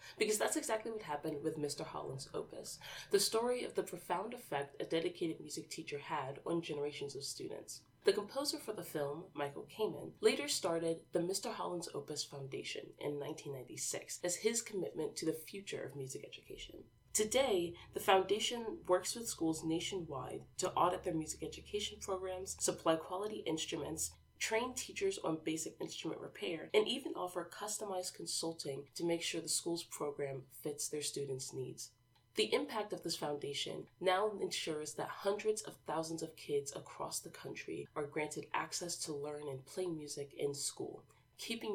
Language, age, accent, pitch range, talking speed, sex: English, 20-39, American, 145-210 Hz, 160 wpm, female